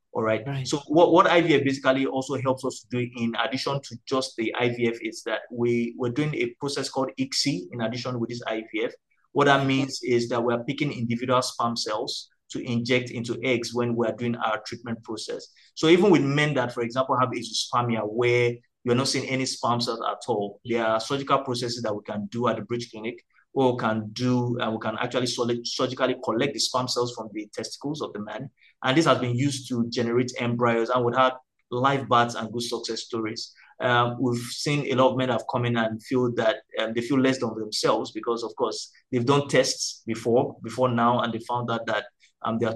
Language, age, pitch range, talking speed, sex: English, 30-49, 115-130 Hz, 215 wpm, male